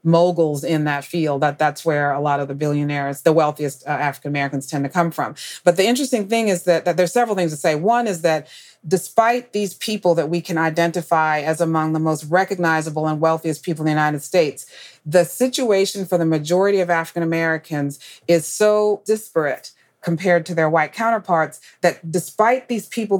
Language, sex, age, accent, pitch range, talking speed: English, female, 40-59, American, 155-190 Hz, 190 wpm